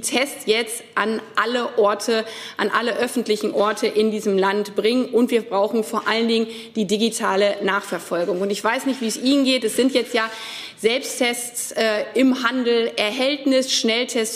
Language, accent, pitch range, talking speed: German, German, 215-260 Hz, 165 wpm